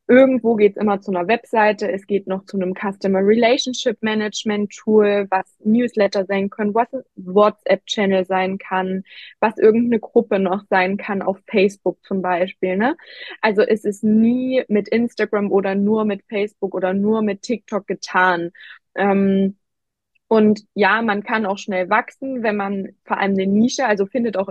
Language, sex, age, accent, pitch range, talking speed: German, female, 20-39, German, 190-215 Hz, 165 wpm